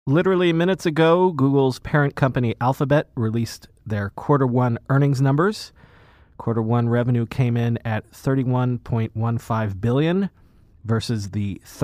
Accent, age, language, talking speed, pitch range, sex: American, 30-49, English, 115 wpm, 115-145 Hz, male